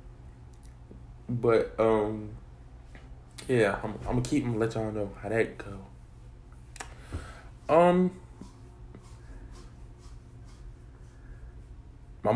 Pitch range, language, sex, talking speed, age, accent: 95-130 Hz, English, male, 80 wpm, 20-39, American